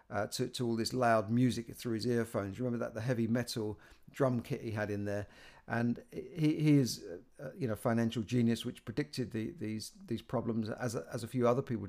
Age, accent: 50-69, British